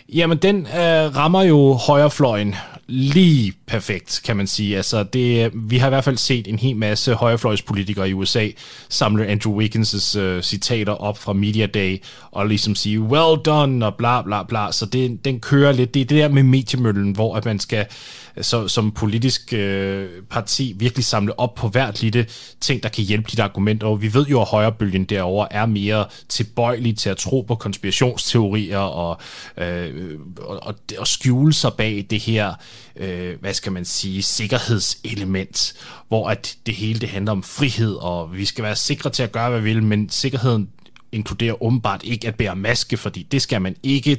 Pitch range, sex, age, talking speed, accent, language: 105-130 Hz, male, 20-39, 185 wpm, native, Danish